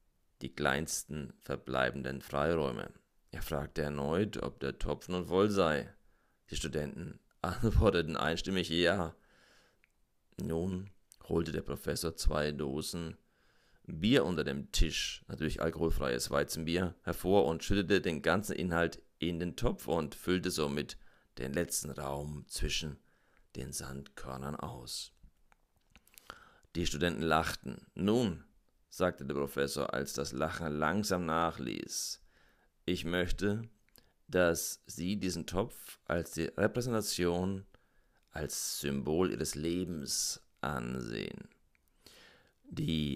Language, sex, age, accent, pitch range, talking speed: German, male, 40-59, German, 70-90 Hz, 105 wpm